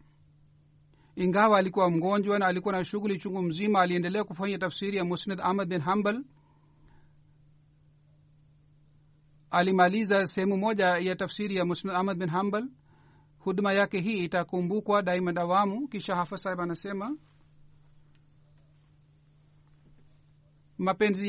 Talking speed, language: 110 wpm, Swahili